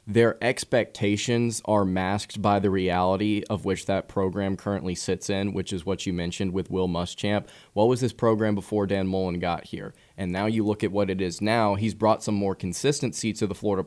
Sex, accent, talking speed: male, American, 210 wpm